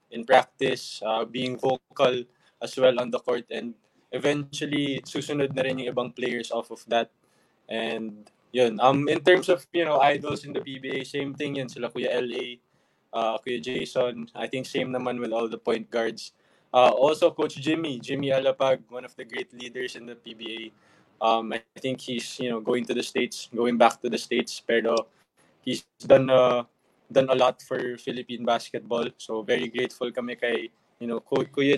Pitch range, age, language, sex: 120-140 Hz, 20-39, English, male